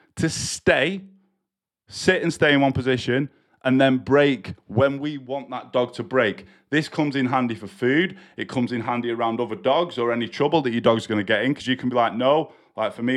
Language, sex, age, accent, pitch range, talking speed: English, male, 20-39, British, 120-155 Hz, 230 wpm